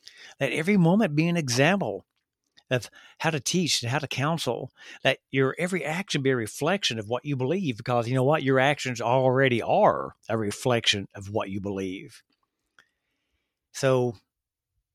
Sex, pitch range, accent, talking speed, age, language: male, 115-145 Hz, American, 160 wpm, 50-69, English